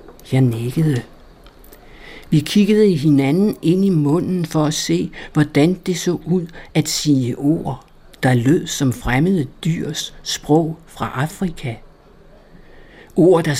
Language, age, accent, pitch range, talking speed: Danish, 60-79, native, 135-170 Hz, 130 wpm